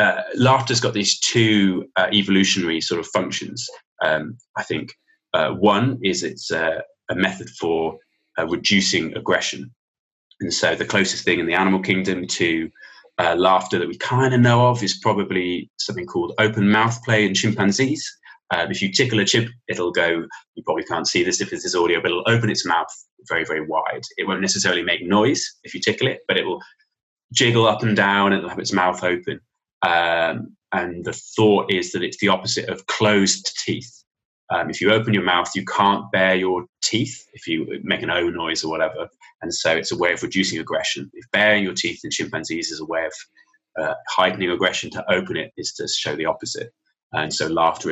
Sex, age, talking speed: male, 20-39, 200 wpm